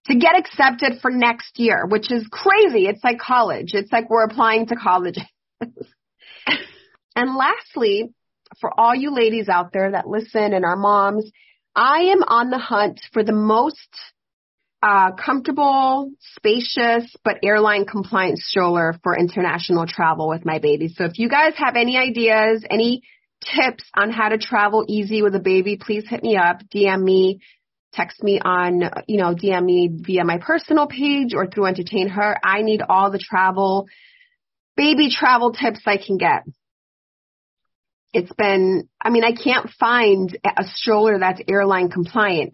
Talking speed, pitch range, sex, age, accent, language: 160 wpm, 185-235 Hz, female, 30-49, American, English